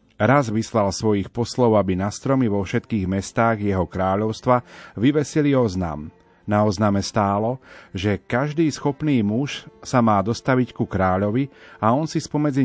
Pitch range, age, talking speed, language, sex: 100-125 Hz, 40-59, 140 wpm, Slovak, male